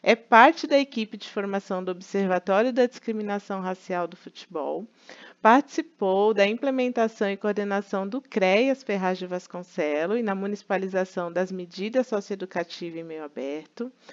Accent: Brazilian